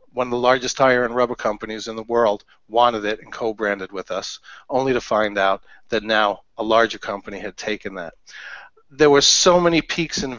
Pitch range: 110-130 Hz